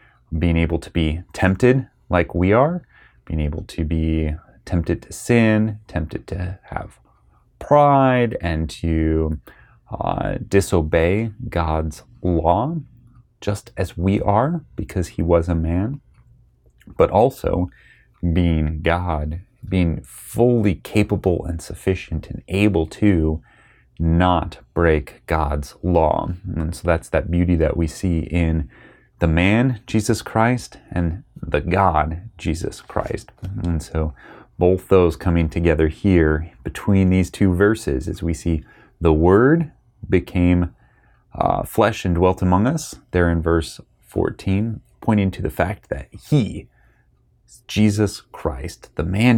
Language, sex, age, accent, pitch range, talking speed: English, male, 30-49, American, 85-105 Hz, 130 wpm